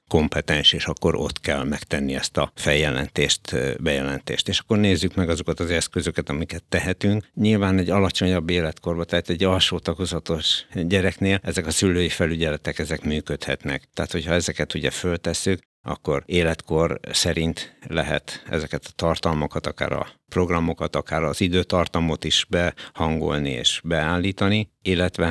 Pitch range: 80-90 Hz